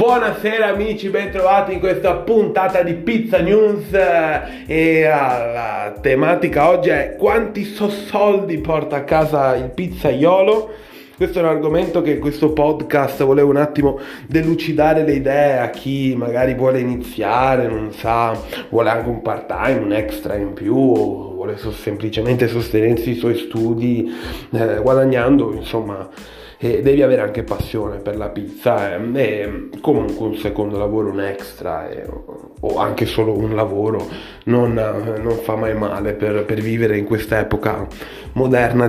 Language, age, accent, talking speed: Italian, 30-49, native, 150 wpm